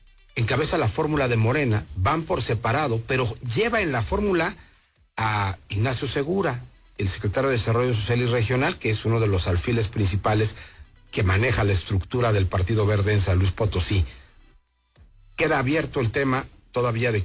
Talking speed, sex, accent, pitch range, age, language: 165 wpm, male, Mexican, 100-125 Hz, 40-59, English